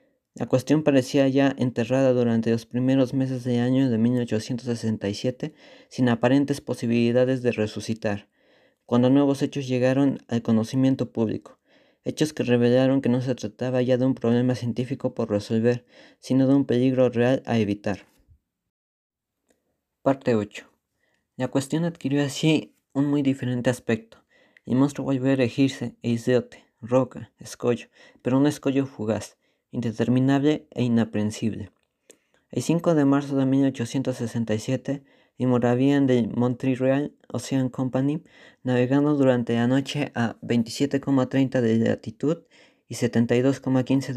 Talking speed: 130 wpm